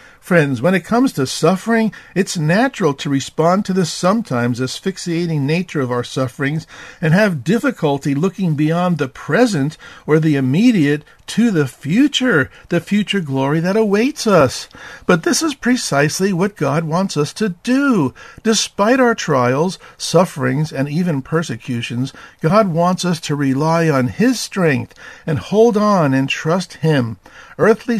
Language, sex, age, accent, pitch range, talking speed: English, male, 50-69, American, 130-185 Hz, 150 wpm